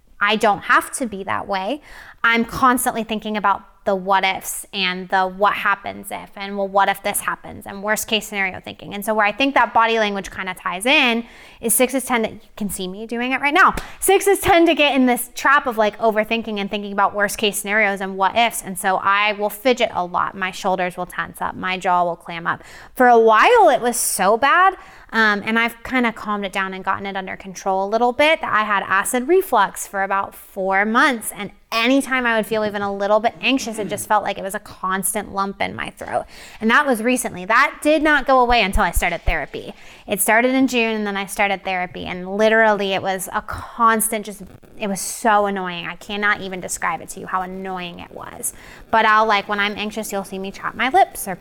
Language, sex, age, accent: English, female, 20-39, American